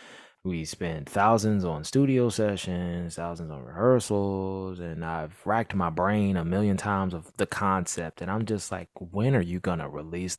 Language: English